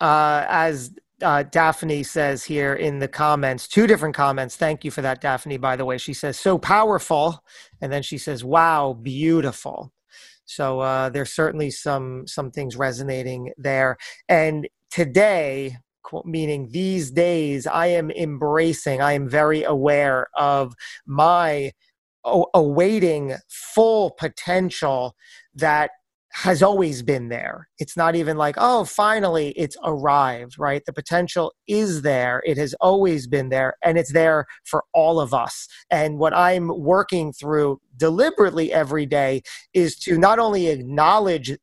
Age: 30-49